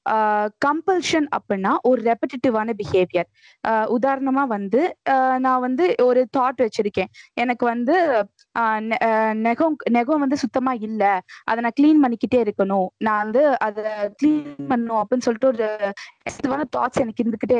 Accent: native